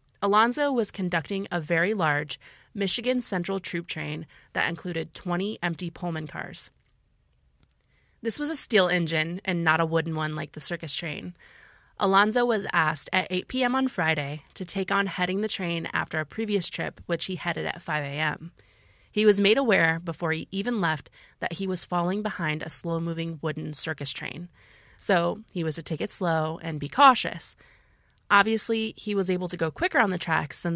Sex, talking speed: female, 180 wpm